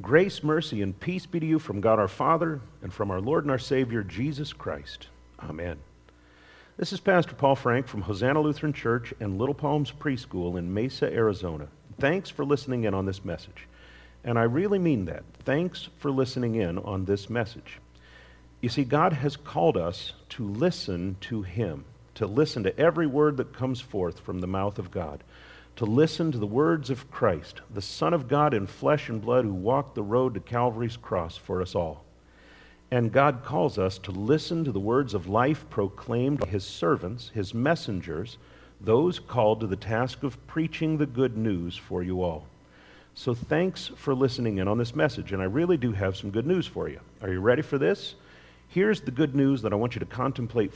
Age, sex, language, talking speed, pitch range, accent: 50-69, male, English, 195 wpm, 95-140 Hz, American